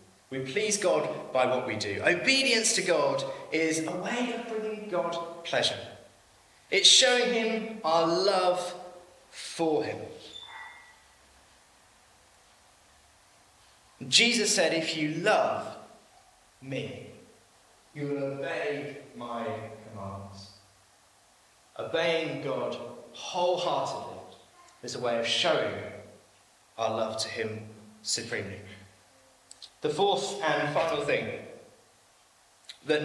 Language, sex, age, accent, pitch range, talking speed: English, male, 30-49, British, 115-190 Hz, 100 wpm